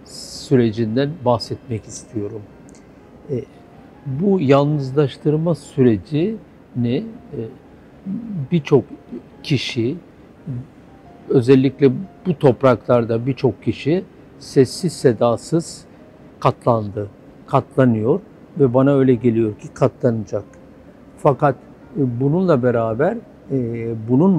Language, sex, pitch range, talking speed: Turkish, male, 120-155 Hz, 70 wpm